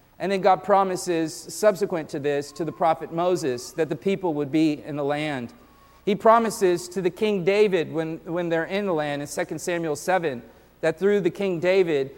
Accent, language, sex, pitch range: American, English, male, 160-190 Hz